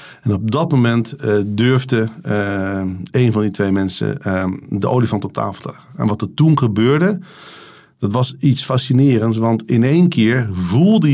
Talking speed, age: 180 wpm, 50-69